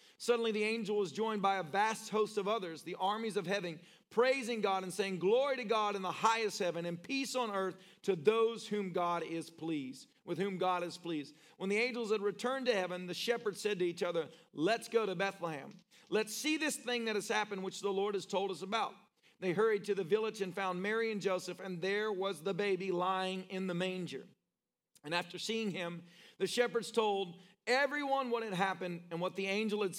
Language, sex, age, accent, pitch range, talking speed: English, male, 40-59, American, 170-215 Hz, 215 wpm